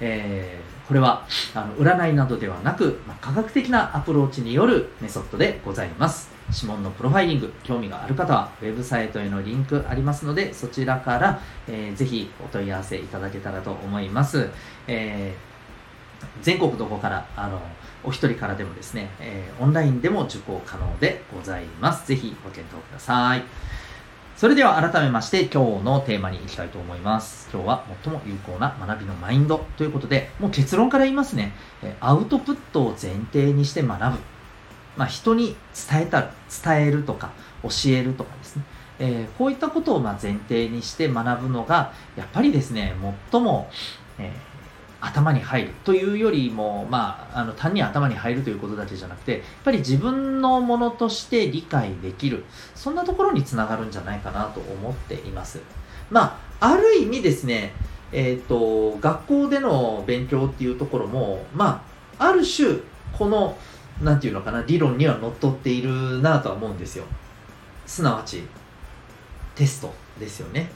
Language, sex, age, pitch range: Japanese, male, 40-59, 105-150 Hz